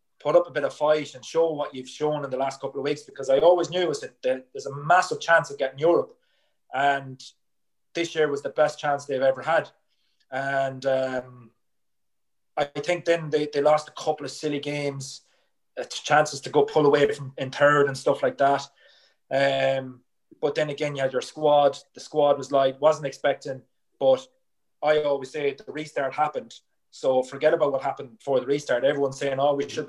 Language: English